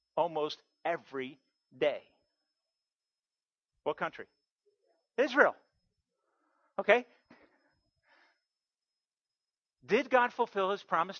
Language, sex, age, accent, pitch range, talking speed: English, male, 50-69, American, 230-290 Hz, 65 wpm